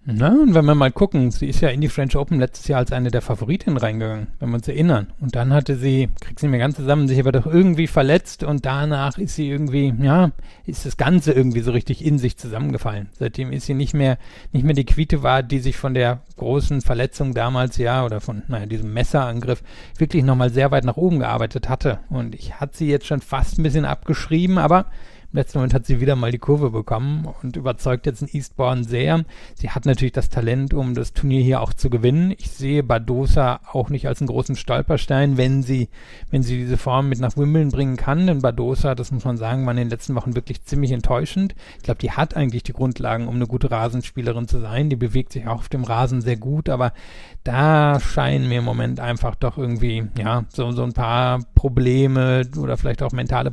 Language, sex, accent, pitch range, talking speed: German, male, German, 120-140 Hz, 220 wpm